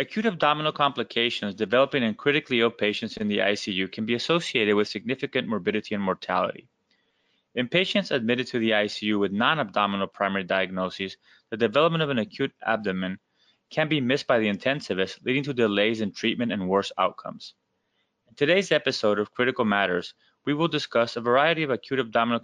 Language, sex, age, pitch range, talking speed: English, male, 20-39, 105-130 Hz, 170 wpm